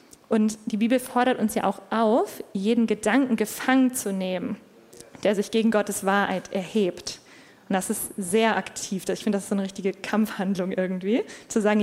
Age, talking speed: 20-39, 180 wpm